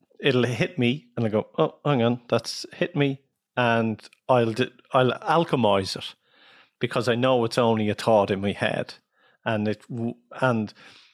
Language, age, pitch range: English, 40-59, 110-135 Hz